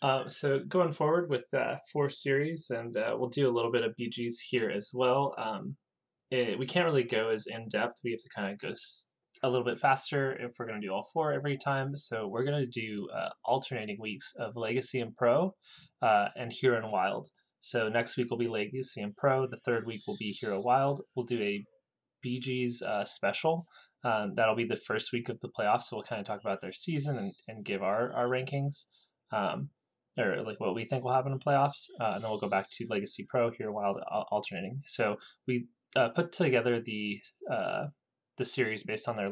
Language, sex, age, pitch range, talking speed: English, male, 20-39, 110-135 Hz, 220 wpm